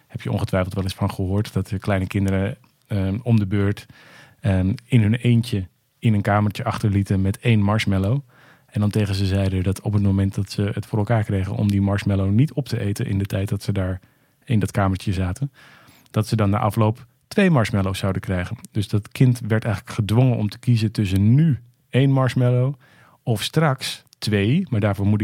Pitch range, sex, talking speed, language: 100-120 Hz, male, 205 wpm, Dutch